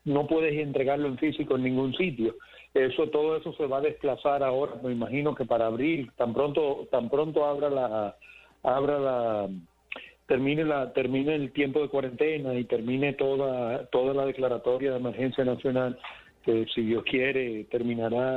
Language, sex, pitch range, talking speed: Spanish, male, 120-135 Hz, 165 wpm